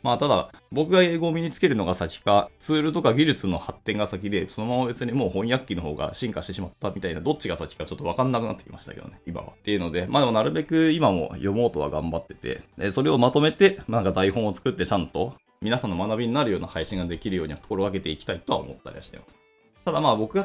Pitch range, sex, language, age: 95-150 Hz, male, Japanese, 20-39